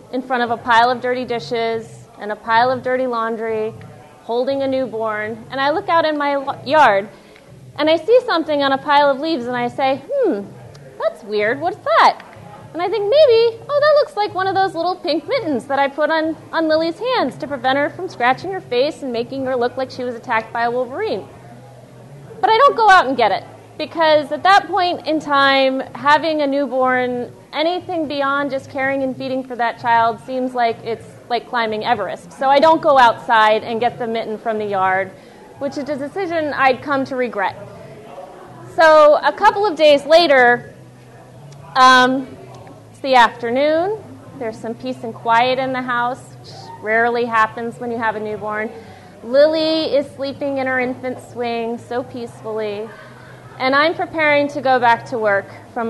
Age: 30-49